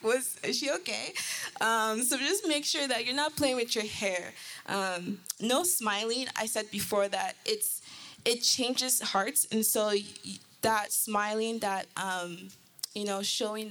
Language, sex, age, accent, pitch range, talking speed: English, female, 20-39, American, 200-245 Hz, 160 wpm